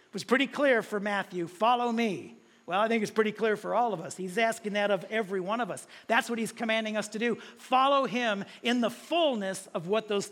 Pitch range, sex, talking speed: 195-265 Hz, male, 235 wpm